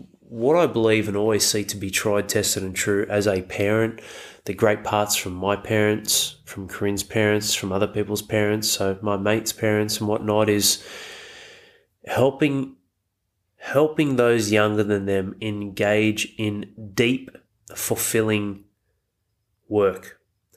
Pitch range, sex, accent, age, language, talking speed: 100-110 Hz, male, Australian, 20-39, English, 135 wpm